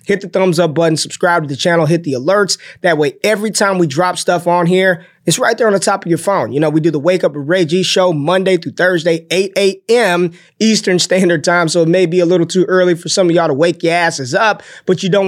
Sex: male